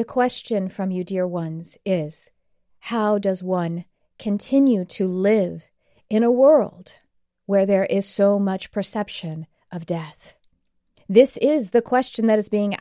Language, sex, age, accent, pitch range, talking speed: English, female, 40-59, American, 195-250 Hz, 145 wpm